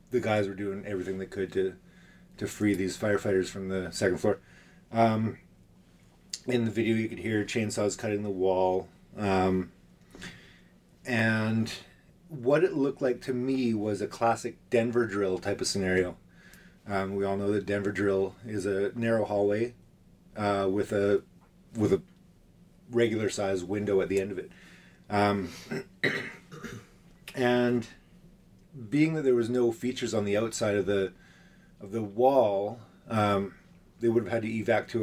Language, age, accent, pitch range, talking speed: English, 30-49, American, 100-120 Hz, 155 wpm